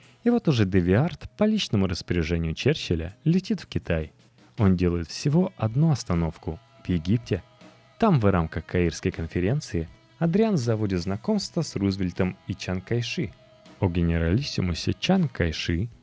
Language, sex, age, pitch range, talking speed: Russian, male, 20-39, 85-130 Hz, 130 wpm